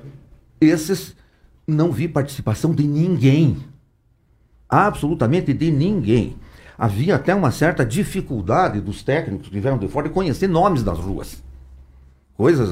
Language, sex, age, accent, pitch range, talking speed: Portuguese, male, 60-79, Brazilian, 95-155 Hz, 125 wpm